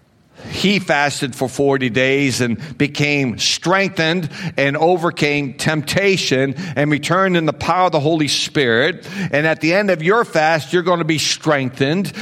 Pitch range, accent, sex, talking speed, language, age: 150-185 Hz, American, male, 155 wpm, English, 60-79